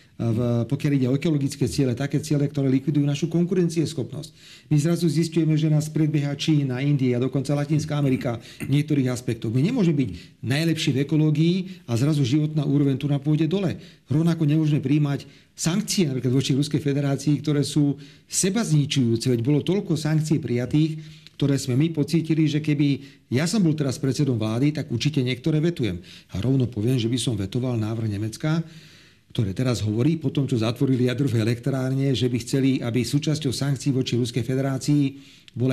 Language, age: Slovak, 40-59